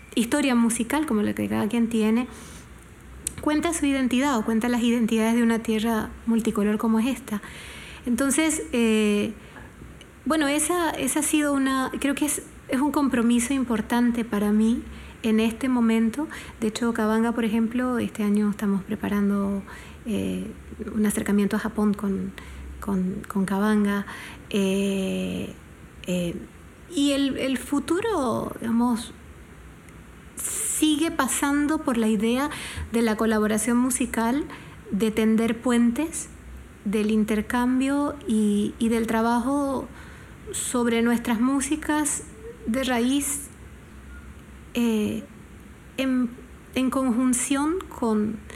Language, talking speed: Spanish, 115 wpm